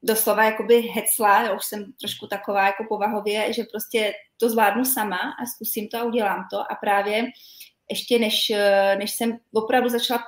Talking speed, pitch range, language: 170 wpm, 210-245 Hz, Czech